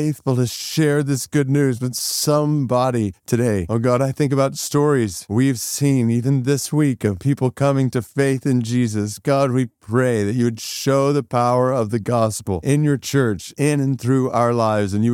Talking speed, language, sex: 190 wpm, English, male